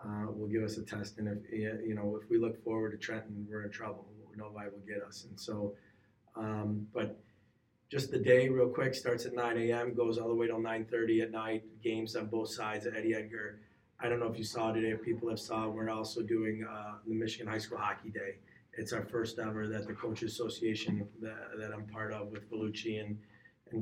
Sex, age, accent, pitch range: male, 30-49, American, 105-115 Hz